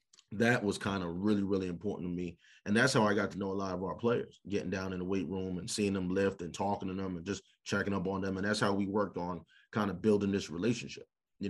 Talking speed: 275 wpm